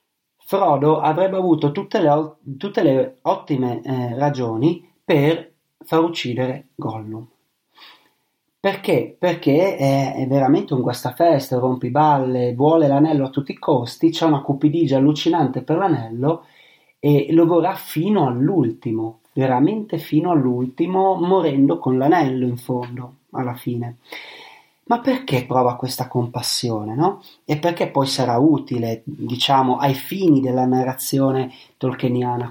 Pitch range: 125-160 Hz